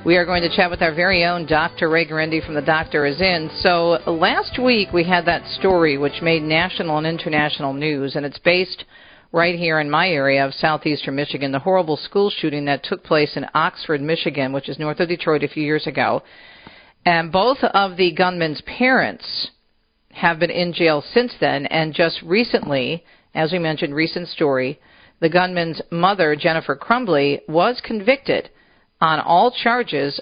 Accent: American